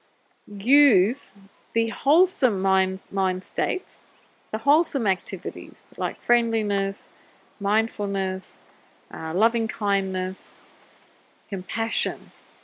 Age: 40-59